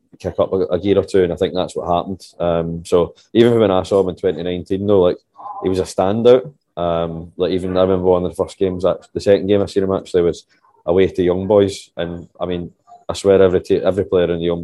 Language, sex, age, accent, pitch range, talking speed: English, male, 20-39, British, 85-95 Hz, 250 wpm